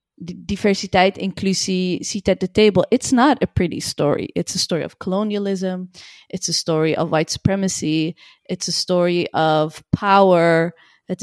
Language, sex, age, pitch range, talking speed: Dutch, female, 20-39, 175-215 Hz, 155 wpm